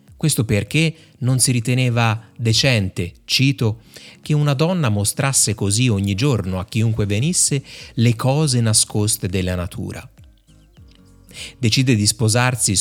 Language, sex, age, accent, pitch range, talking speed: Italian, male, 30-49, native, 100-130 Hz, 115 wpm